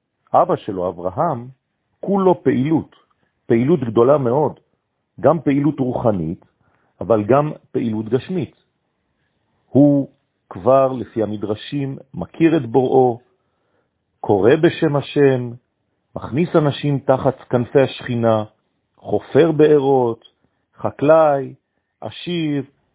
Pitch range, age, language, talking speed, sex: 110-155 Hz, 50-69, French, 90 wpm, male